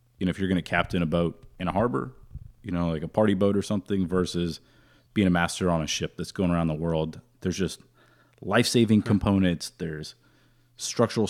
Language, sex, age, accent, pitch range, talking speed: English, male, 30-49, American, 85-110 Hz, 200 wpm